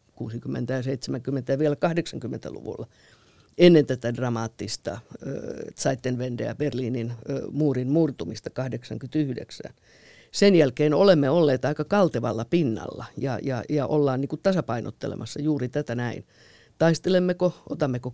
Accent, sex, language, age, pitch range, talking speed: native, female, Finnish, 50-69, 125-155 Hz, 105 wpm